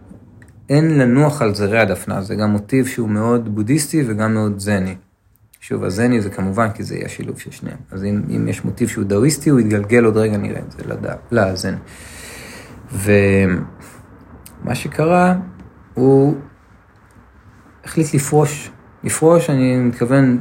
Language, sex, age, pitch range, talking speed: Hebrew, male, 40-59, 100-135 Hz, 140 wpm